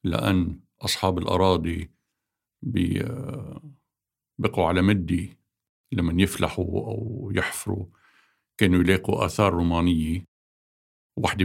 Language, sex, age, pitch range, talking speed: Arabic, male, 50-69, 85-105 Hz, 80 wpm